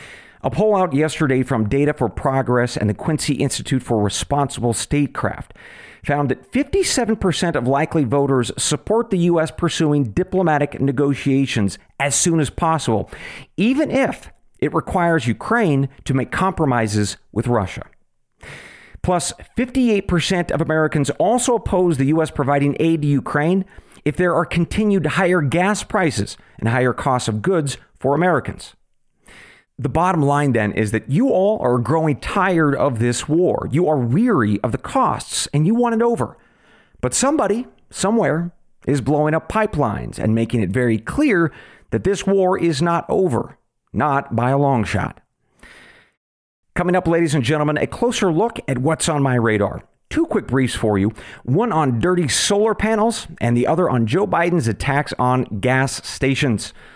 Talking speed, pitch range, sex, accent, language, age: 155 wpm, 125-180 Hz, male, American, English, 50-69